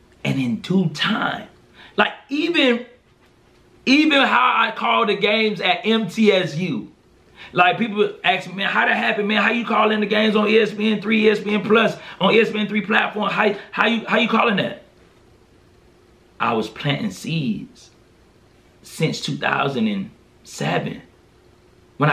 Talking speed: 130 wpm